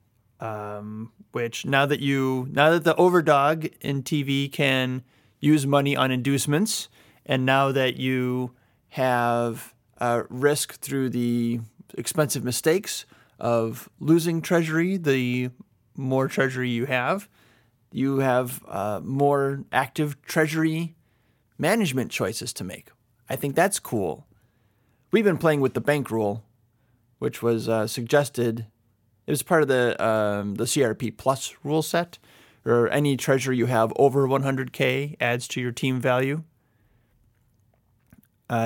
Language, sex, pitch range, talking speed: English, male, 115-145 Hz, 130 wpm